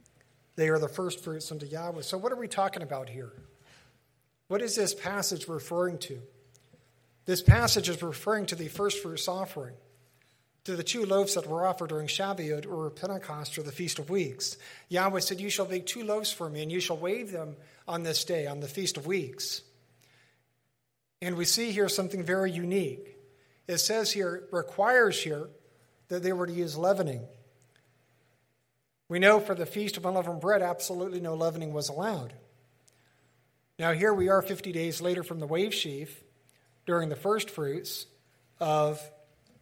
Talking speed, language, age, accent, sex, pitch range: 175 wpm, English, 50-69, American, male, 135-185 Hz